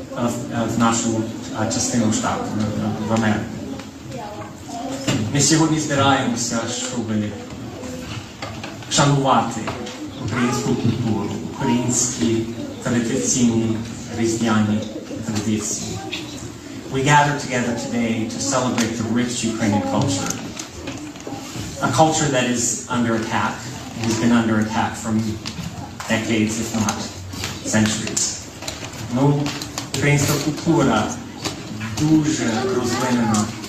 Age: 30-49